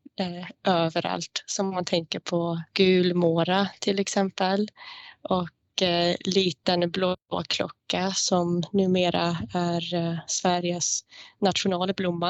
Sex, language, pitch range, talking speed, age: female, Swedish, 175-195 Hz, 95 wpm, 20-39